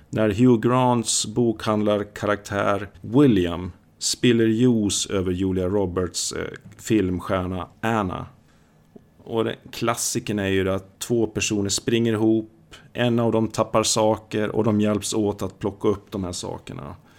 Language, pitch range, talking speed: Swedish, 95-115 Hz, 135 wpm